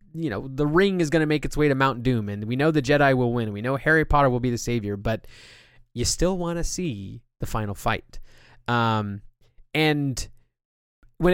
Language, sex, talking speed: English, male, 210 wpm